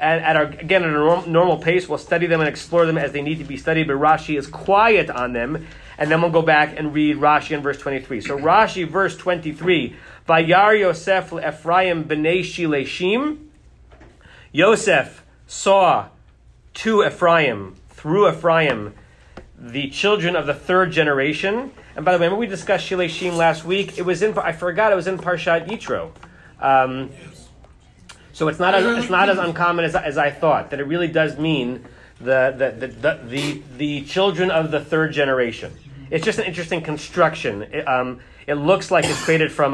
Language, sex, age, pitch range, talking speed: English, male, 30-49, 145-180 Hz, 180 wpm